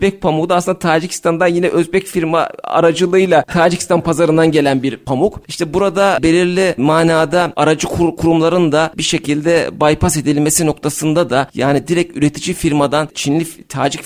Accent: native